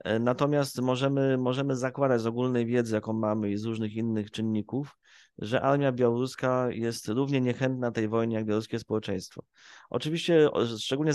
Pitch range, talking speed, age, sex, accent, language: 115-135 Hz, 145 wpm, 30-49, male, native, Polish